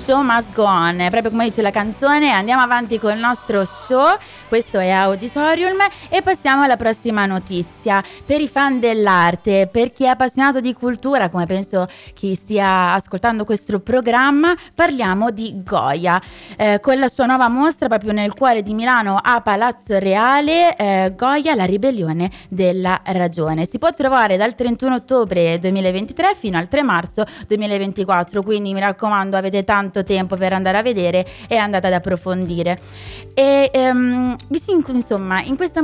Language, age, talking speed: Italian, 20-39, 155 wpm